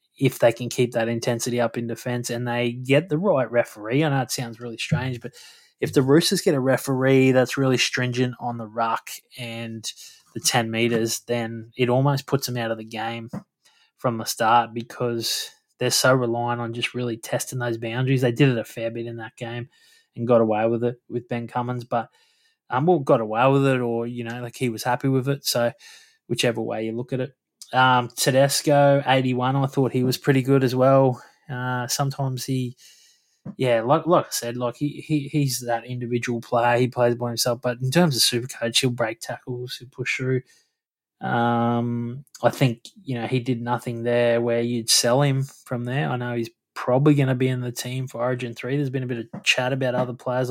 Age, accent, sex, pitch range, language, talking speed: 20-39, Australian, male, 120-135 Hz, English, 215 wpm